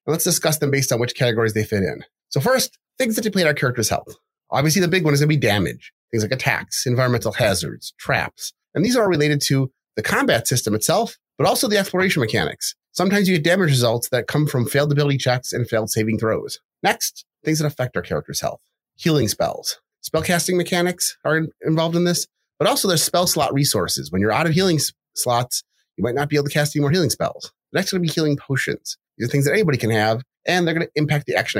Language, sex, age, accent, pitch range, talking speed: English, male, 30-49, American, 120-155 Hz, 230 wpm